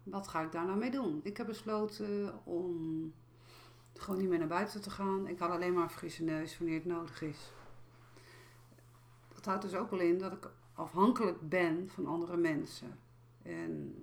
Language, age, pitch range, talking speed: Dutch, 50-69, 155-195 Hz, 185 wpm